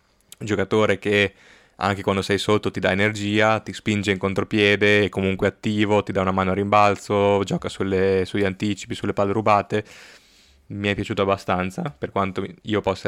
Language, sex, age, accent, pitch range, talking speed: Italian, male, 20-39, native, 95-105 Hz, 175 wpm